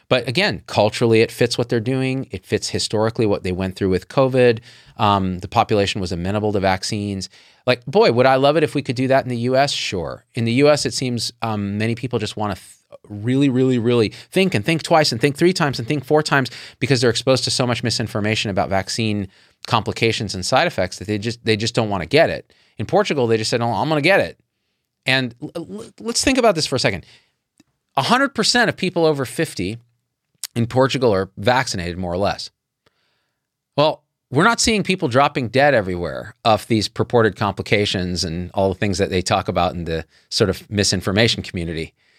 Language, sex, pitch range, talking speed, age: English, male, 100-135 Hz, 200 wpm, 30-49